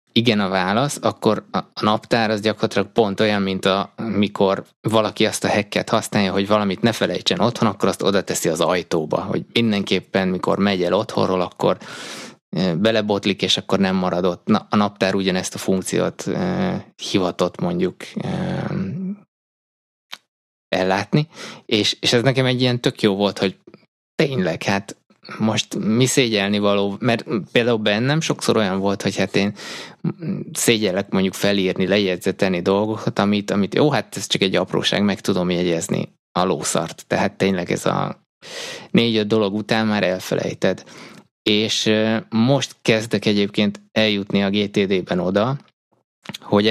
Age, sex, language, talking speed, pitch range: 20-39, male, Hungarian, 145 wpm, 95-115 Hz